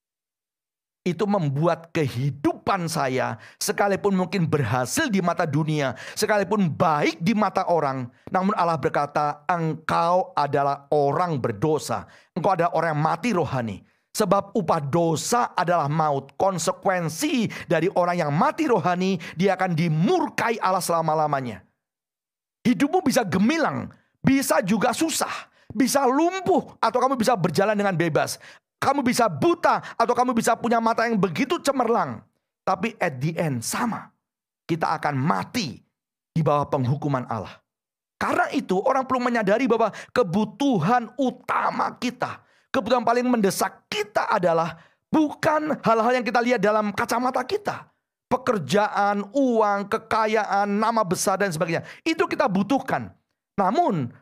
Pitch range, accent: 165-245 Hz, Indonesian